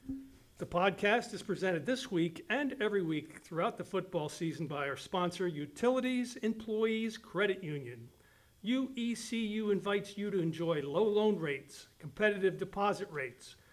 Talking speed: 135 wpm